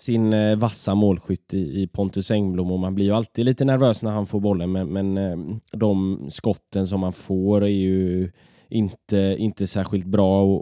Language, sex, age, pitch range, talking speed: Swedish, male, 10-29, 95-110 Hz, 175 wpm